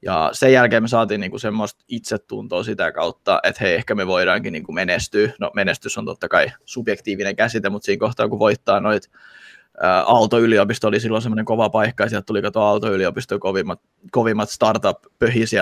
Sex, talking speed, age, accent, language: male, 170 wpm, 20-39, native, Finnish